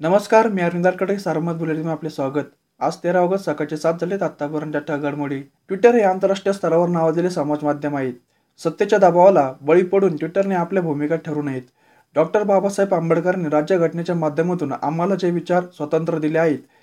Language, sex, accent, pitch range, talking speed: Marathi, male, native, 150-185 Hz, 155 wpm